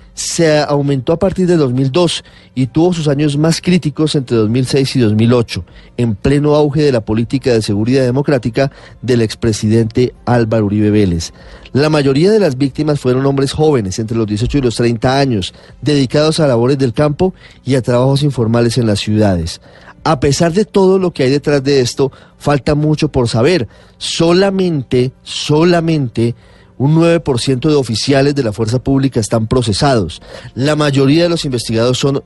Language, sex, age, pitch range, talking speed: Spanish, male, 30-49, 115-150 Hz, 165 wpm